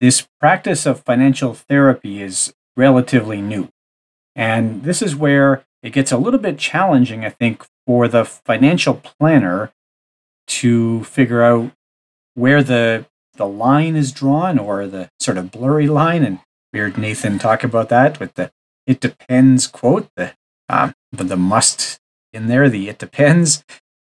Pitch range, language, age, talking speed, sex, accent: 110-135 Hz, English, 40-59, 150 wpm, male, American